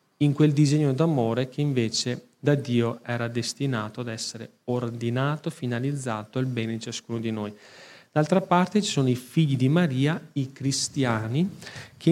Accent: native